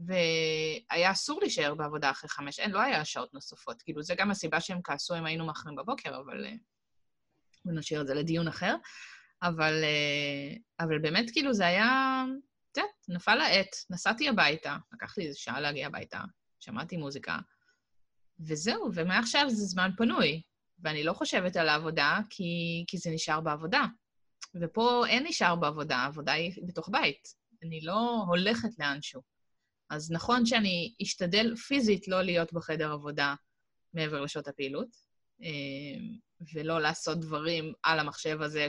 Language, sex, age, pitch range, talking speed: Hebrew, female, 20-39, 150-210 Hz, 145 wpm